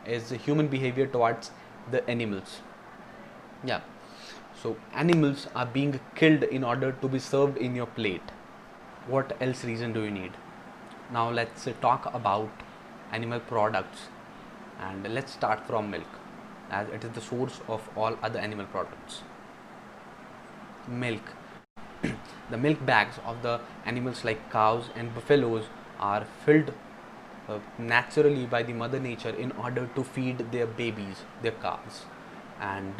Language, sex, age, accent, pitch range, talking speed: English, male, 20-39, Indian, 115-135 Hz, 135 wpm